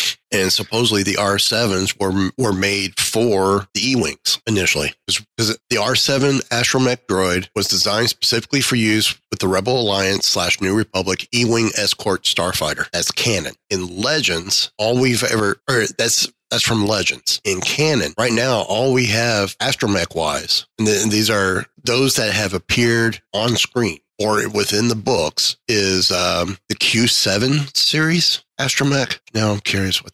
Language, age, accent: English, 30-49, American